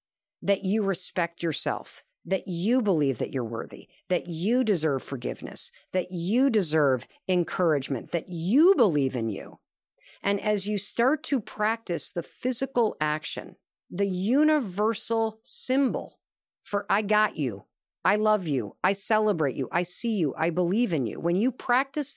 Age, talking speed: 50-69, 150 wpm